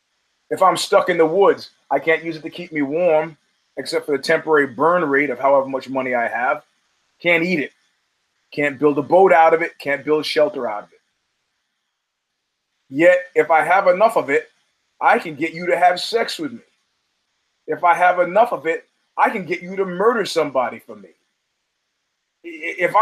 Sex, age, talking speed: male, 30-49, 195 wpm